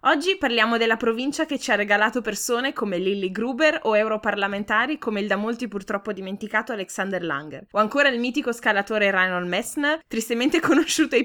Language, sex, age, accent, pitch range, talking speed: Italian, female, 20-39, native, 200-260 Hz, 170 wpm